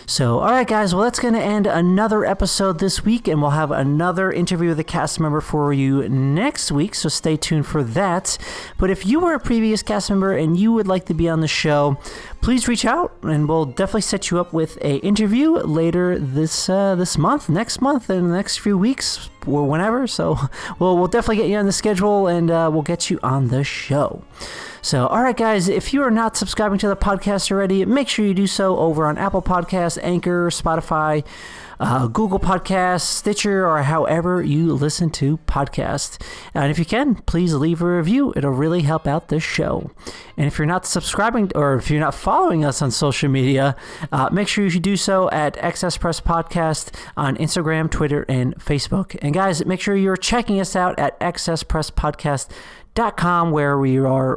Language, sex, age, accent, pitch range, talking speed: English, male, 30-49, American, 150-195 Hz, 205 wpm